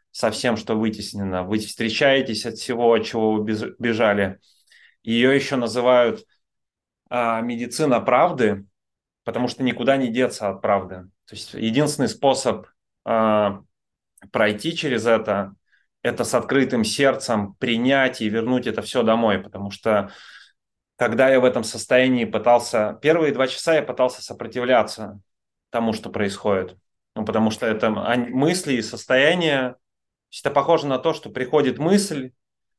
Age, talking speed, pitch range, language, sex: 30-49, 135 wpm, 110-135 Hz, Russian, male